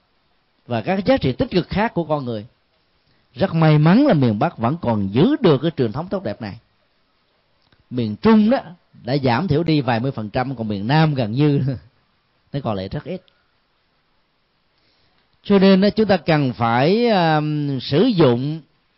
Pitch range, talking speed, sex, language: 120-175 Hz, 180 wpm, male, Vietnamese